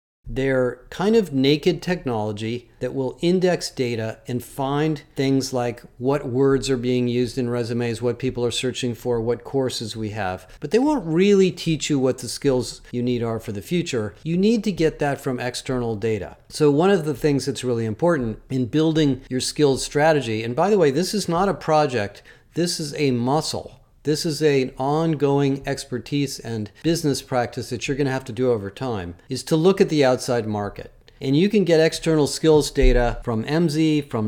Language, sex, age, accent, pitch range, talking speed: English, male, 40-59, American, 120-150 Hz, 200 wpm